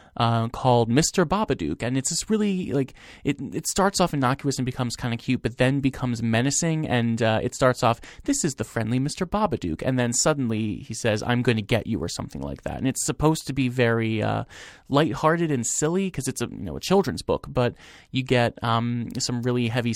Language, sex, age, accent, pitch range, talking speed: English, male, 30-49, American, 115-140 Hz, 220 wpm